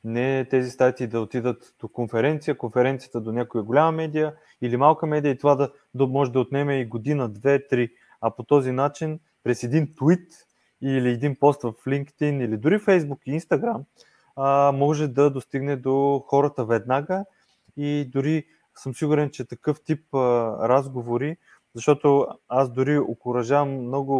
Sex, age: male, 20-39